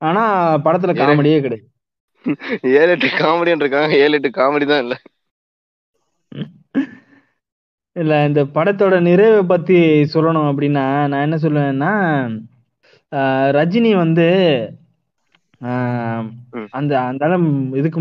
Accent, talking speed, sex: native, 55 wpm, male